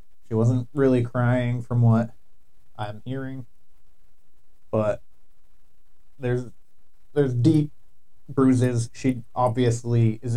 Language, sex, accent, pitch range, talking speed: English, male, American, 110-130 Hz, 95 wpm